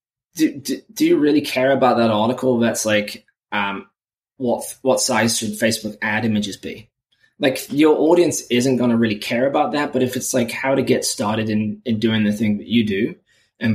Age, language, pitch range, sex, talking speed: 20-39, English, 110-130 Hz, male, 205 wpm